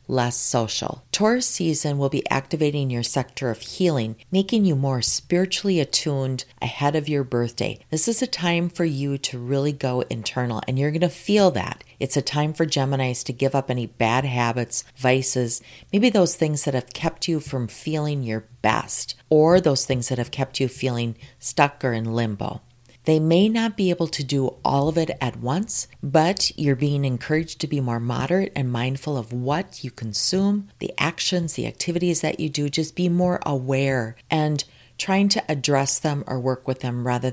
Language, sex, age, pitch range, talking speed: English, female, 40-59, 120-155 Hz, 190 wpm